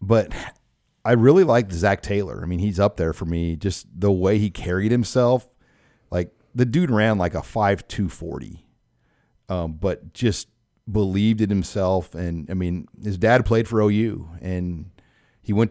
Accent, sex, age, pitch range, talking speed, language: American, male, 40-59, 90-110 Hz, 170 wpm, English